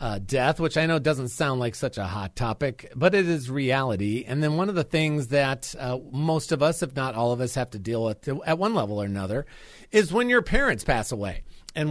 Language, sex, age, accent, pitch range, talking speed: English, male, 40-59, American, 110-155 Hz, 240 wpm